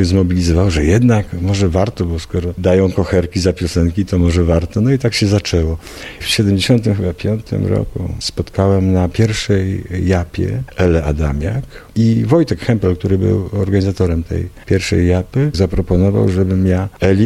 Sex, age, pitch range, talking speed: male, 50-69, 90-110 Hz, 145 wpm